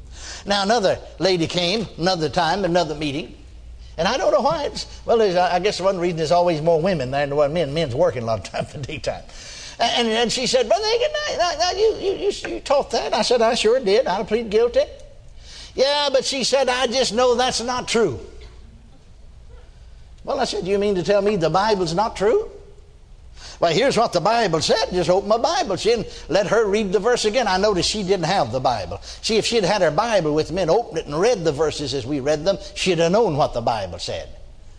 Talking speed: 215 wpm